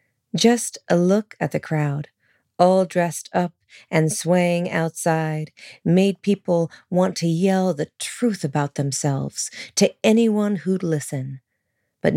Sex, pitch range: female, 150-190 Hz